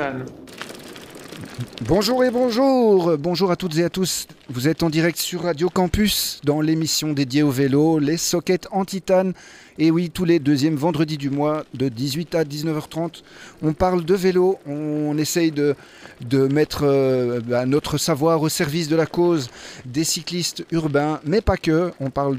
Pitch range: 140-170 Hz